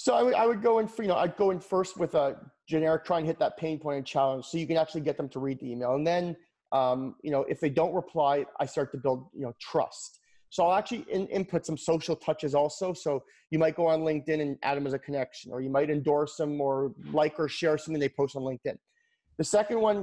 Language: English